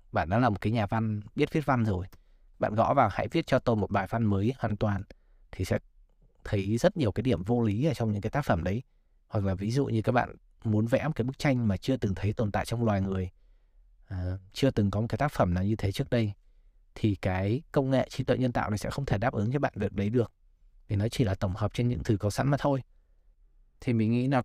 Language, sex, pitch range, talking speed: Vietnamese, male, 100-125 Hz, 270 wpm